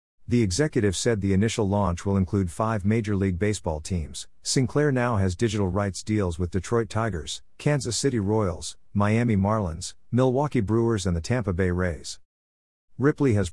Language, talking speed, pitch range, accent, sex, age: English, 160 wpm, 90-115 Hz, American, male, 50-69